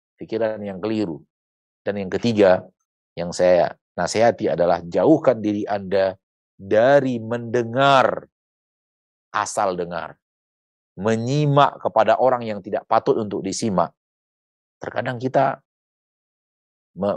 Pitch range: 100-140 Hz